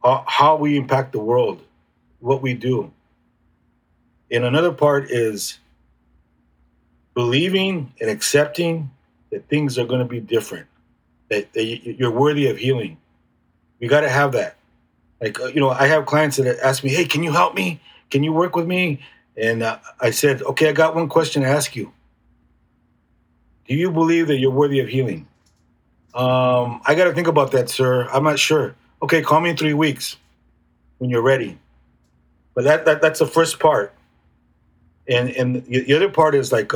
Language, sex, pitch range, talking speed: English, male, 100-150 Hz, 170 wpm